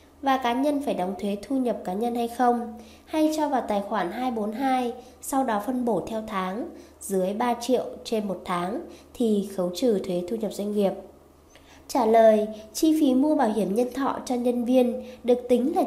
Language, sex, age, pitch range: Vietnamese, female, 20-39, 210-265 Hz